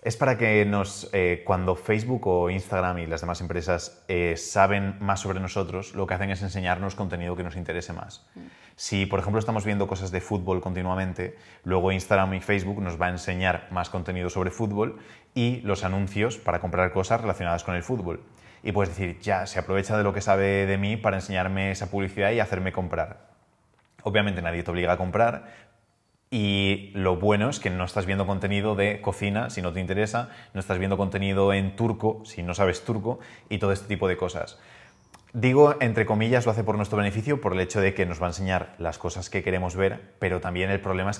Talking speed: 205 wpm